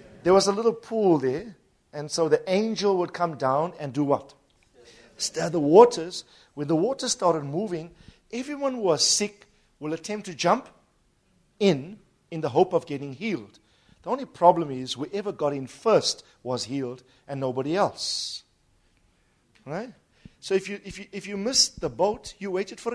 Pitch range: 135-195 Hz